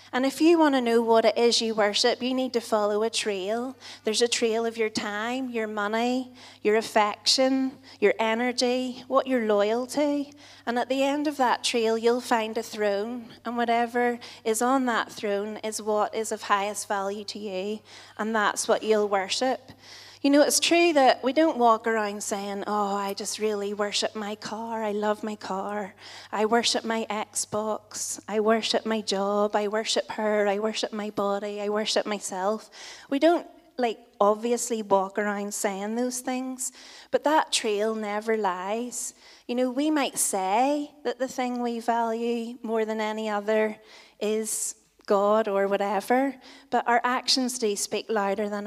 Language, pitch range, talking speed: English, 210-245 Hz, 175 wpm